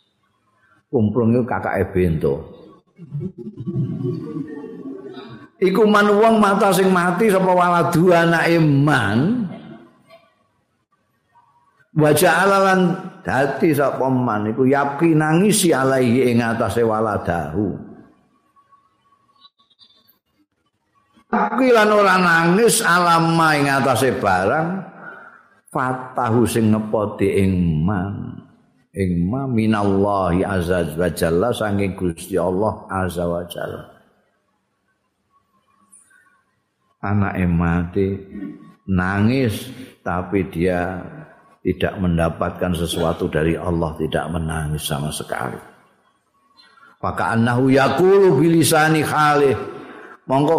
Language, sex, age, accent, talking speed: Indonesian, male, 50-69, native, 80 wpm